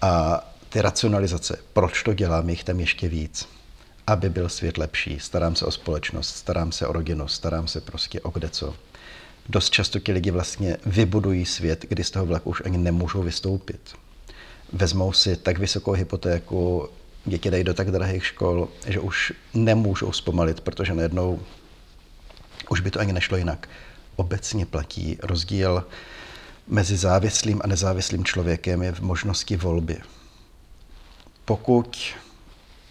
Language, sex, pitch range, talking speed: Czech, male, 85-105 Hz, 145 wpm